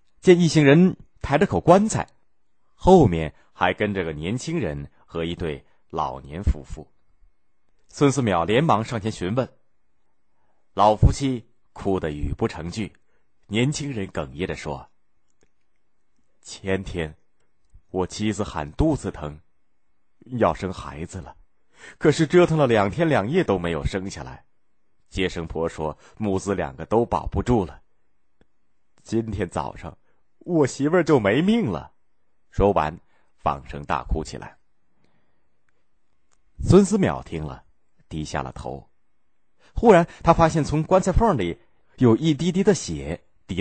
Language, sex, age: Chinese, male, 30-49